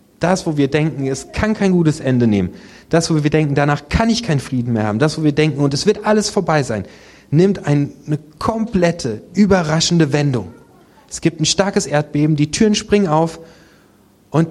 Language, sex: German, male